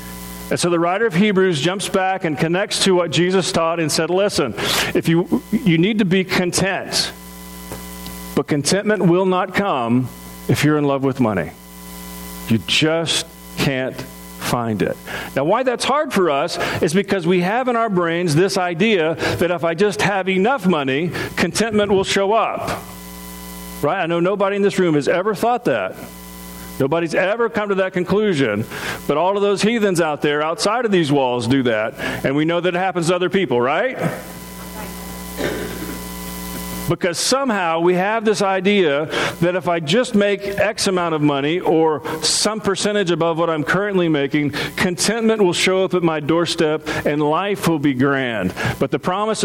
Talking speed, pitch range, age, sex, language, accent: 175 wpm, 135-190 Hz, 50-69, male, English, American